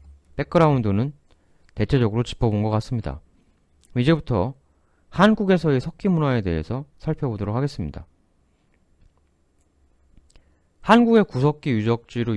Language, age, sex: Korean, 30-49, male